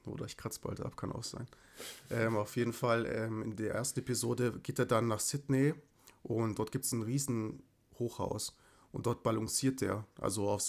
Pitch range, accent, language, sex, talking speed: 105-130 Hz, German, German, male, 195 wpm